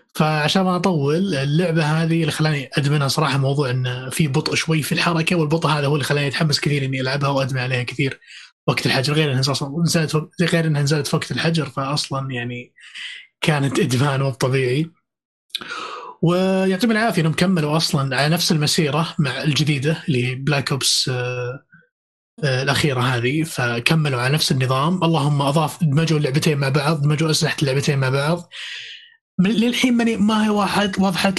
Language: Arabic